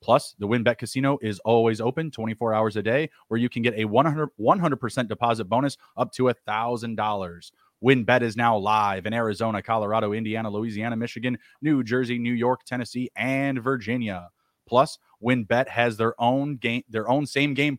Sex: male